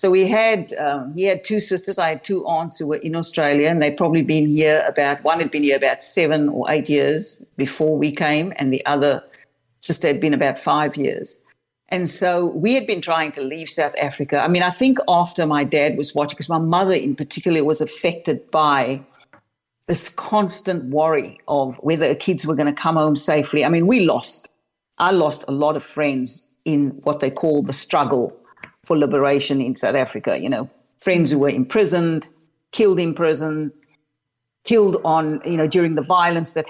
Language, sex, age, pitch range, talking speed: English, female, 60-79, 145-170 Hz, 195 wpm